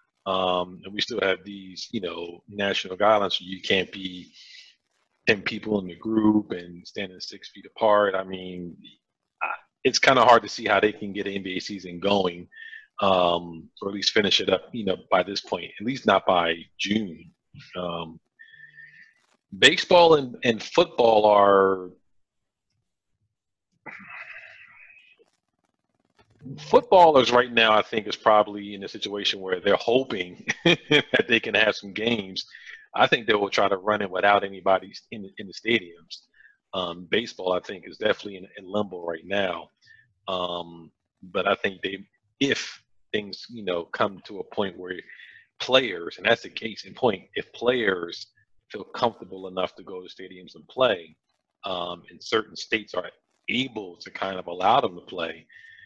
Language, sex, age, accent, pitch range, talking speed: English, male, 40-59, American, 95-120 Hz, 160 wpm